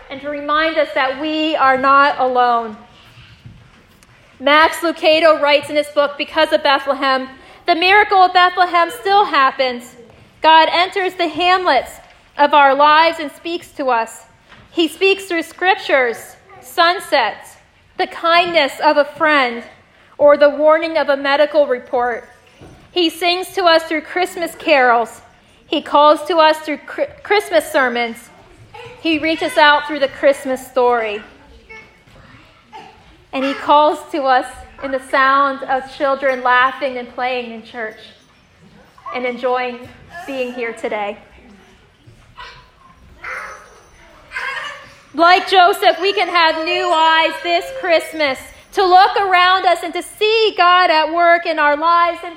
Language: English